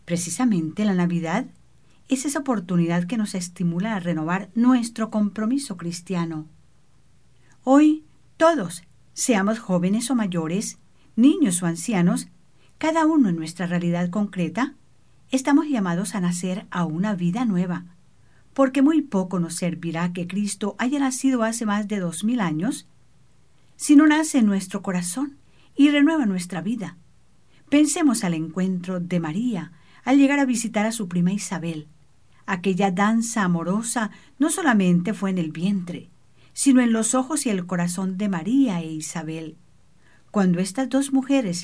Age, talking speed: 50-69, 145 wpm